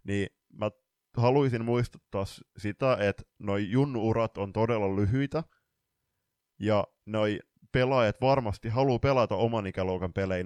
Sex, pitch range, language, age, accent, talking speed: male, 100-130 Hz, Finnish, 20-39, native, 115 wpm